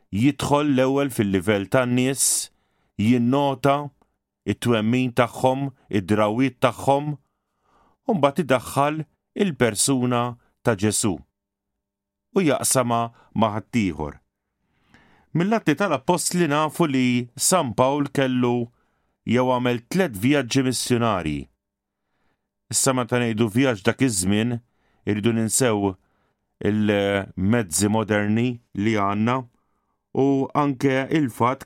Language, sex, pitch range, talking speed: English, male, 105-135 Hz, 55 wpm